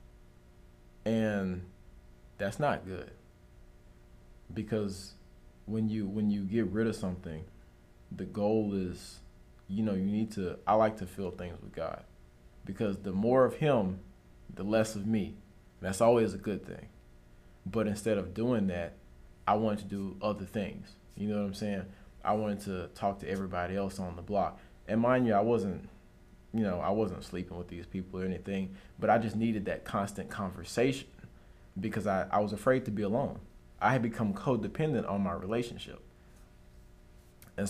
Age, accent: 20-39, American